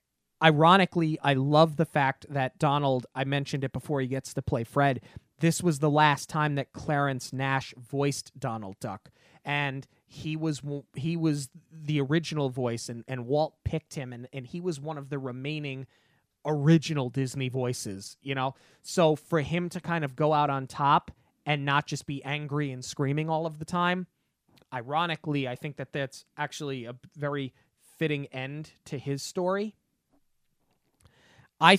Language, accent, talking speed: English, American, 165 wpm